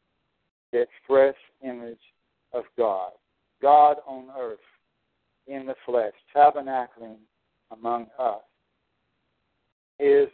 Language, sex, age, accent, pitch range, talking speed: English, male, 60-79, American, 140-165 Hz, 85 wpm